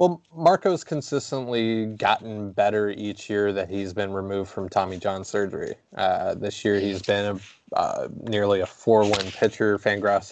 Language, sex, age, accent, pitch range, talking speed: English, male, 20-39, American, 100-115 Hz, 165 wpm